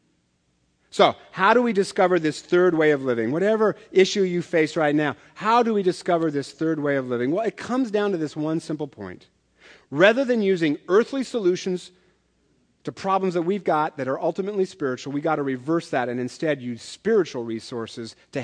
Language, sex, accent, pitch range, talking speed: English, male, American, 135-185 Hz, 190 wpm